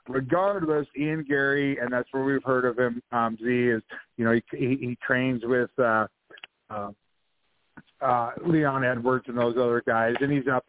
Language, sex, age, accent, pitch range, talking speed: English, male, 50-69, American, 115-135 Hz, 185 wpm